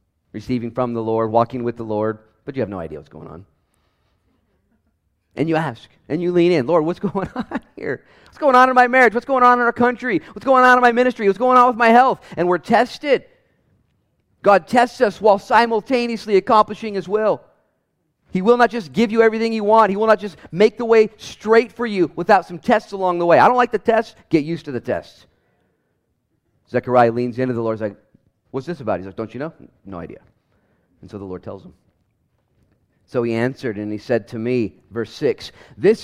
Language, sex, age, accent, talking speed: English, male, 40-59, American, 220 wpm